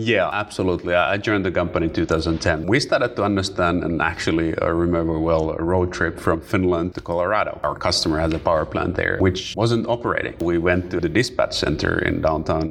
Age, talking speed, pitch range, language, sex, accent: 30-49, 200 wpm, 85-100 Hz, English, male, Finnish